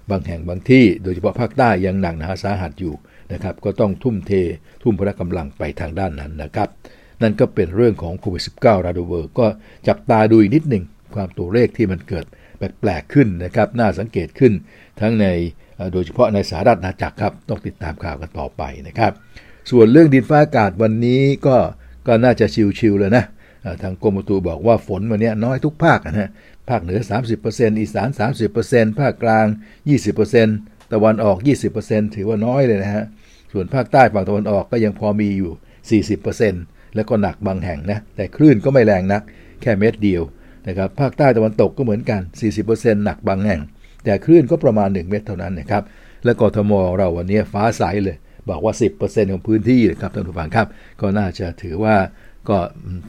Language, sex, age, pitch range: Thai, male, 60-79, 95-115 Hz